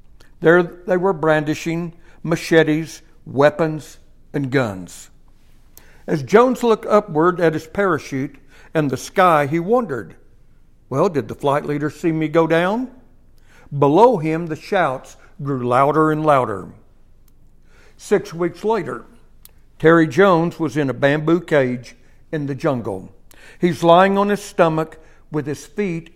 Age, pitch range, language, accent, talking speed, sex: 60-79, 140-175 Hz, English, American, 135 wpm, male